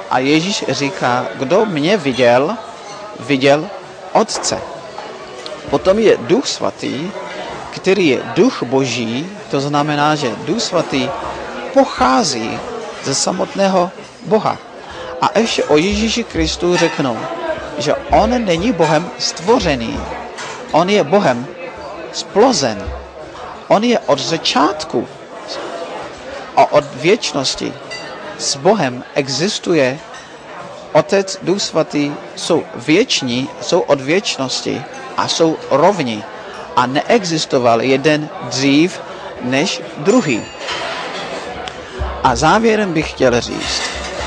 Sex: male